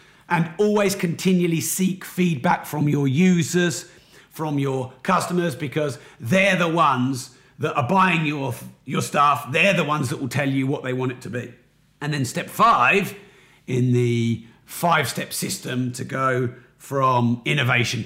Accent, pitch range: British, 125-155 Hz